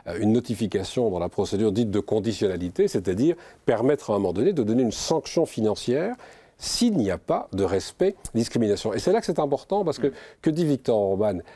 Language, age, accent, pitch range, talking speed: French, 40-59, French, 95-120 Hz, 195 wpm